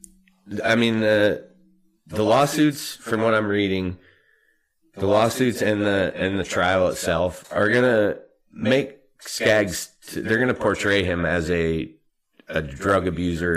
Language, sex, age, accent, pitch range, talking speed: English, male, 30-49, American, 85-105 Hz, 135 wpm